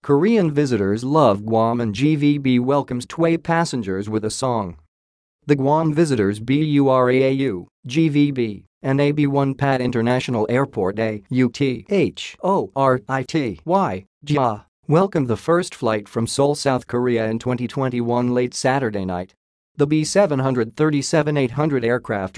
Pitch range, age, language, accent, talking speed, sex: 115-145 Hz, 40-59, English, American, 105 wpm, male